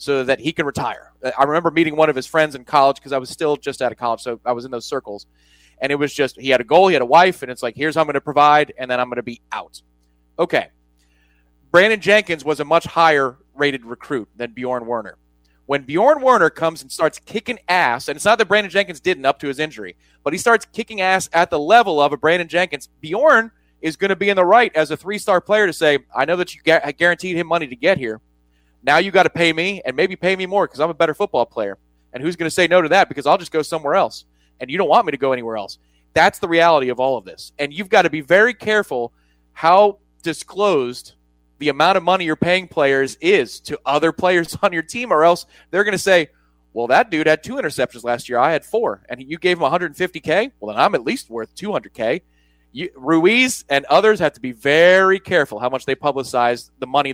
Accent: American